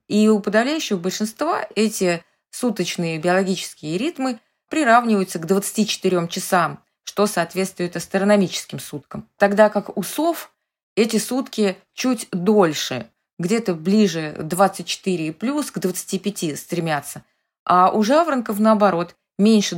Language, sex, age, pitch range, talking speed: Russian, female, 20-39, 175-220 Hz, 110 wpm